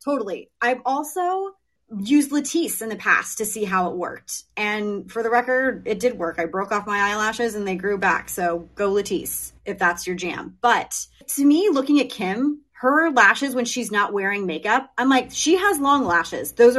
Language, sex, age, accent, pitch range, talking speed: English, female, 30-49, American, 200-255 Hz, 200 wpm